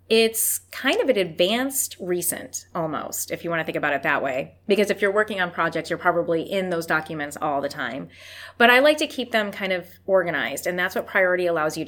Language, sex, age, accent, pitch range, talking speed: English, female, 20-39, American, 165-200 Hz, 225 wpm